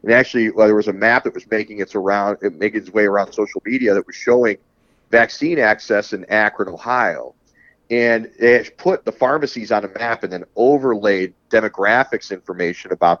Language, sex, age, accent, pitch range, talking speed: English, male, 40-59, American, 105-135 Hz, 185 wpm